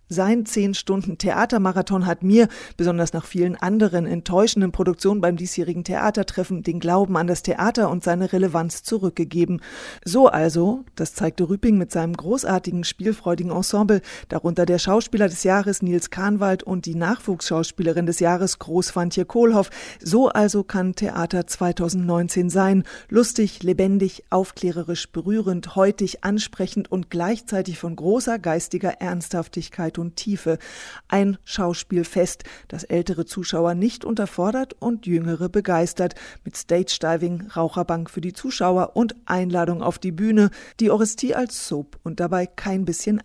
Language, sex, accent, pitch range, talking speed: German, female, German, 175-205 Hz, 135 wpm